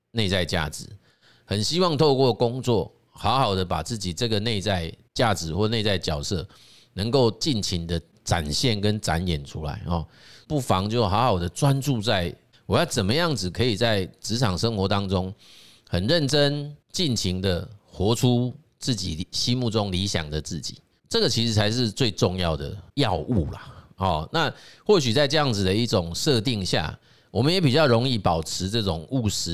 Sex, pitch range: male, 90-120 Hz